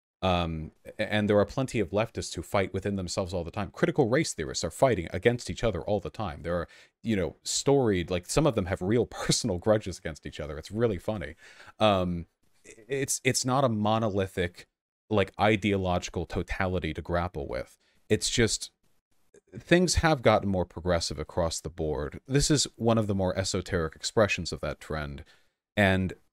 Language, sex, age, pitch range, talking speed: English, male, 30-49, 90-110 Hz, 180 wpm